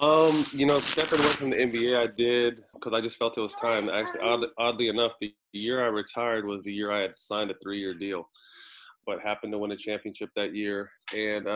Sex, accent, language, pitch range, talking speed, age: male, American, English, 100-115 Hz, 225 wpm, 20-39